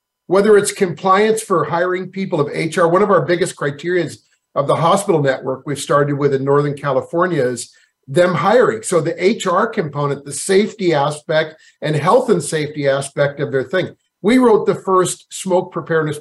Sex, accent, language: male, American, English